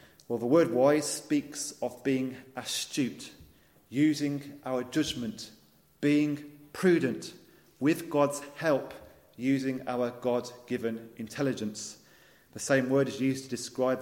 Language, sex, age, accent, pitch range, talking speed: English, male, 30-49, British, 110-140 Hz, 120 wpm